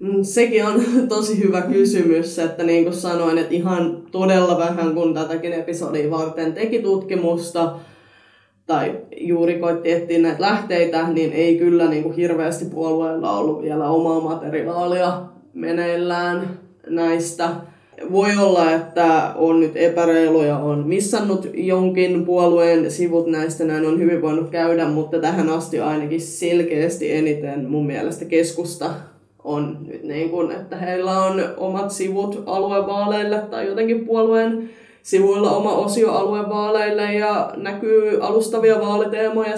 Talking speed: 125 wpm